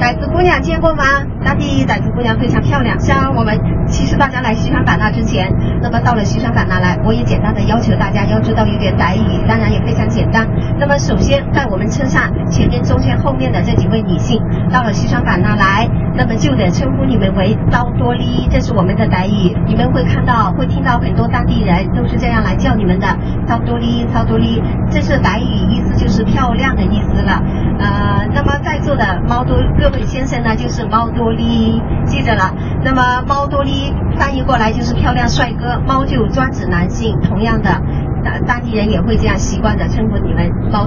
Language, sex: Chinese, male